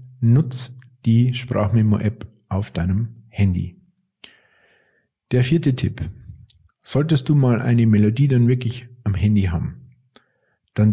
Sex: male